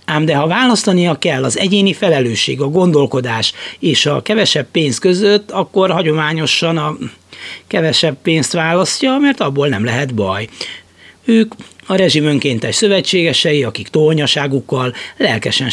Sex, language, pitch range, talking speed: male, Hungarian, 130-185 Hz, 130 wpm